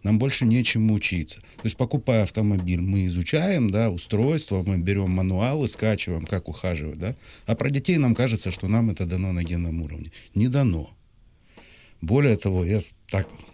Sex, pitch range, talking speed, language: male, 90-115 Hz, 165 wpm, Ukrainian